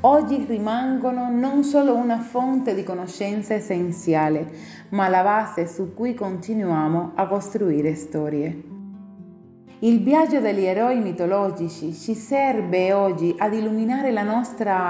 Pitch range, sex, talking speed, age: 180-240 Hz, female, 120 wpm, 30-49